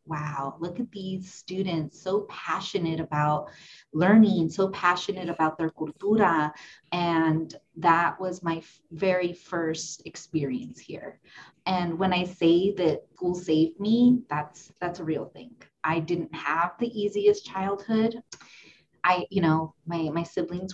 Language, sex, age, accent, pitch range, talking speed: English, female, 30-49, American, 160-190 Hz, 140 wpm